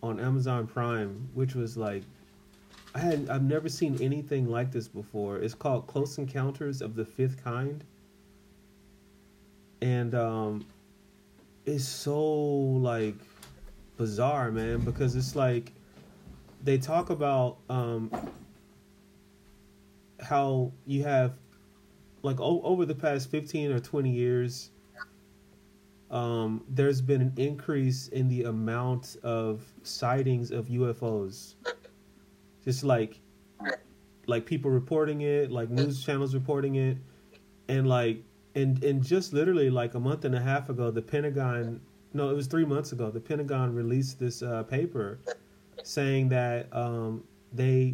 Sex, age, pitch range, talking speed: male, 30-49, 110-135 Hz, 130 wpm